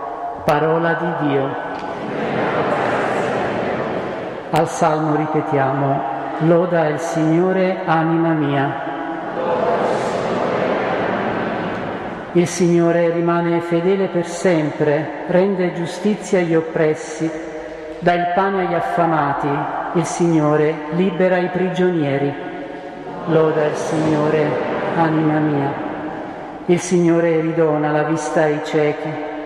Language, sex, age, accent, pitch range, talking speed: Italian, male, 50-69, native, 150-175 Hz, 90 wpm